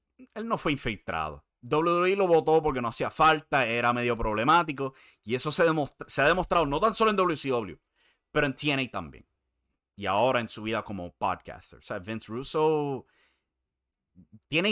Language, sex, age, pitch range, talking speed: Spanish, male, 30-49, 95-155 Hz, 170 wpm